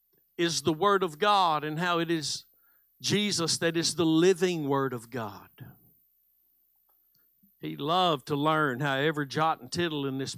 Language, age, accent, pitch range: English, 60-79, American, 120-170 Hz